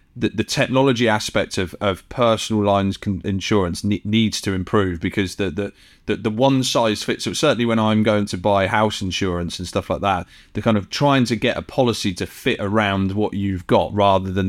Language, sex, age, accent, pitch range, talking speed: English, male, 30-49, British, 95-120 Hz, 205 wpm